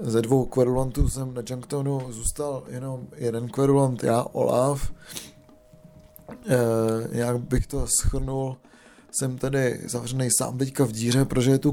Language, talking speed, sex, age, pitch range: Czech, 135 wpm, male, 20-39, 125-140 Hz